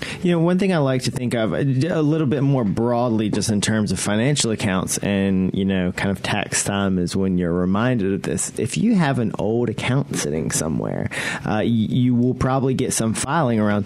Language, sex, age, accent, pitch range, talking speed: English, male, 30-49, American, 100-135 Hz, 215 wpm